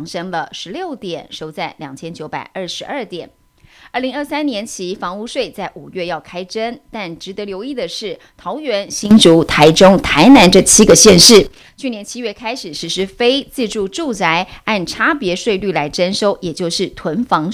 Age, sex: 30-49, female